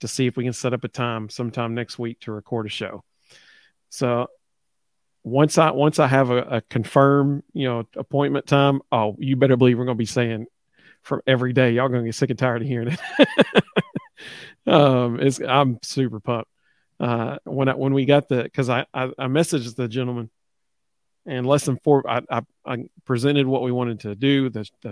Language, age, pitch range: English, 40-59, 120-145 Hz